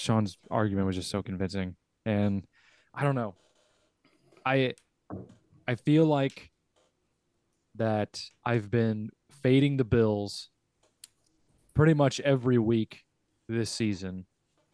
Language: English